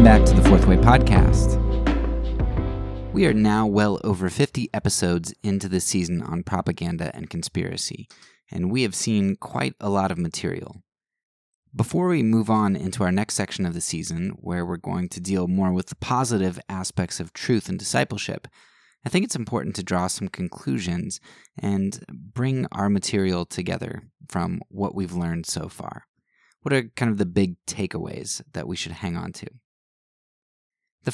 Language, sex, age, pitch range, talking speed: English, male, 20-39, 90-110 Hz, 170 wpm